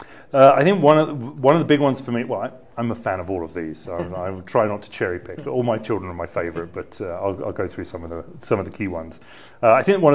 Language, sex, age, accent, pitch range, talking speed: English, male, 40-59, British, 90-120 Hz, 315 wpm